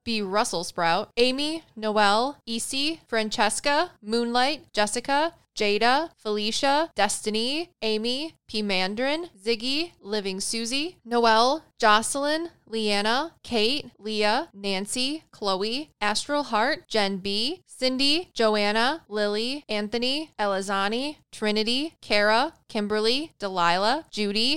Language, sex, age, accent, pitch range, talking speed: English, female, 10-29, American, 210-275 Hz, 95 wpm